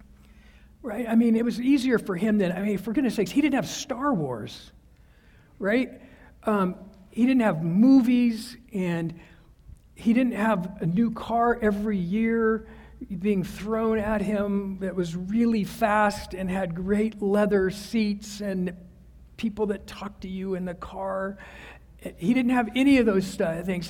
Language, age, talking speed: English, 50-69, 160 wpm